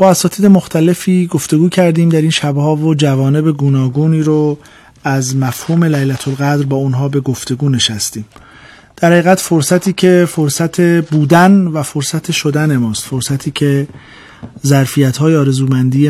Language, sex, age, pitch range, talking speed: Persian, male, 40-59, 125-155 Hz, 140 wpm